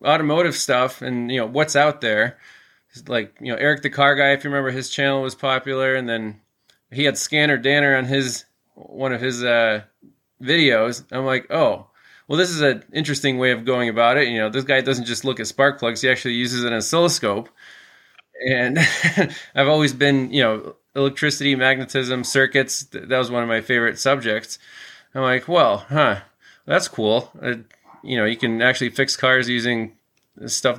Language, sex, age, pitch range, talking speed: English, male, 20-39, 115-135 Hz, 185 wpm